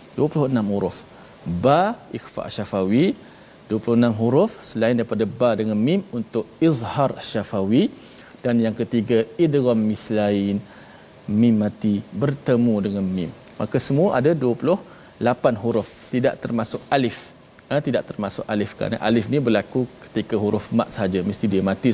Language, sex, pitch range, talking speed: Malayalam, male, 110-145 Hz, 135 wpm